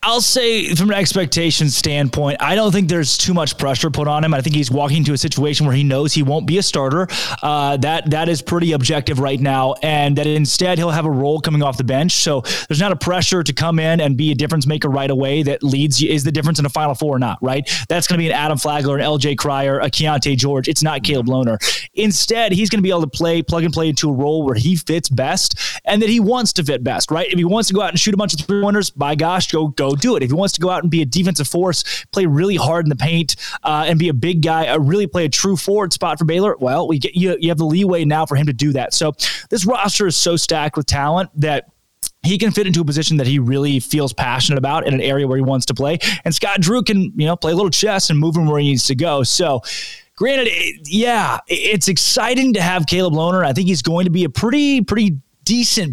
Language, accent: English, American